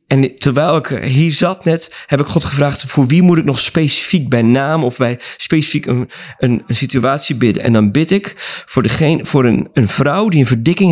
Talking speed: 215 wpm